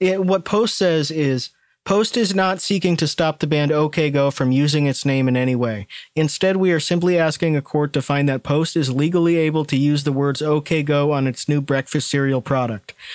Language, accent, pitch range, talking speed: English, American, 135-170 Hz, 215 wpm